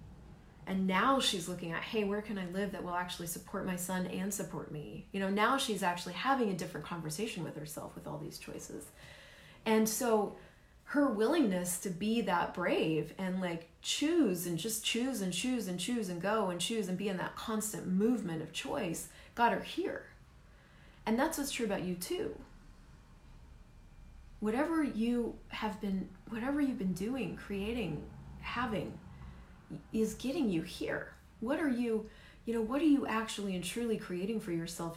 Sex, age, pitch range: female, 30-49, 175-225 Hz